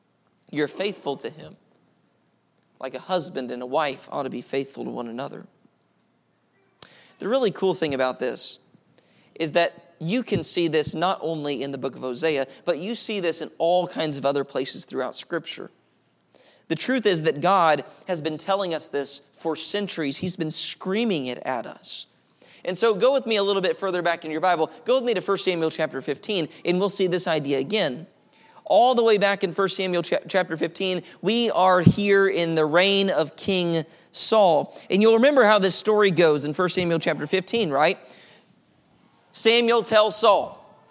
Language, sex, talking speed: English, male, 185 wpm